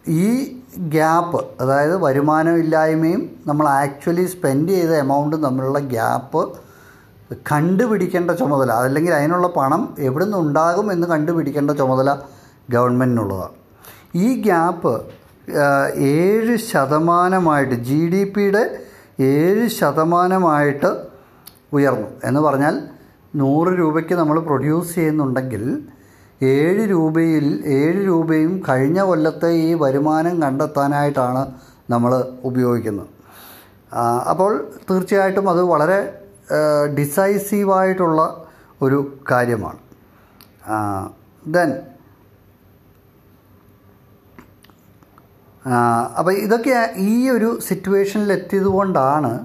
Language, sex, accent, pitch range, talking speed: Malayalam, male, native, 130-175 Hz, 75 wpm